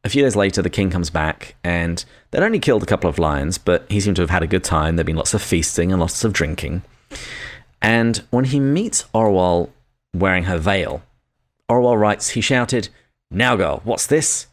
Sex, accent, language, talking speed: male, British, English, 205 wpm